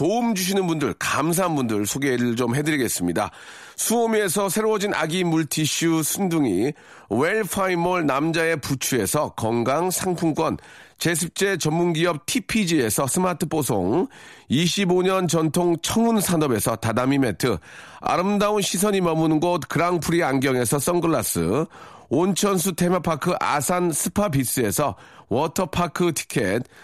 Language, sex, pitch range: Korean, male, 155-195 Hz